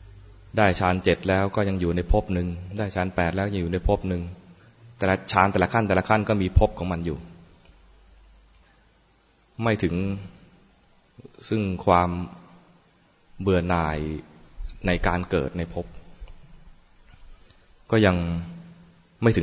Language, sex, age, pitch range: English, male, 20-39, 85-100 Hz